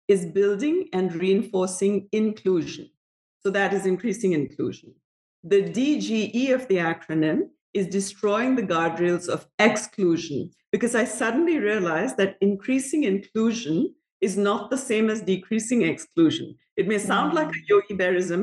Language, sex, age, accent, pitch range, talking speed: English, female, 50-69, Indian, 185-240 Hz, 135 wpm